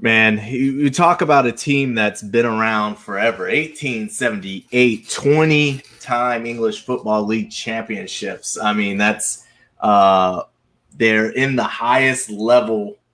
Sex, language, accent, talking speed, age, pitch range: male, English, American, 120 wpm, 30-49, 105-130 Hz